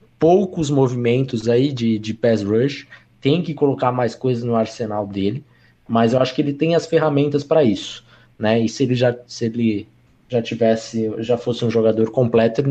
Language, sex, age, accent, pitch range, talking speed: Portuguese, male, 20-39, Brazilian, 110-130 Hz, 190 wpm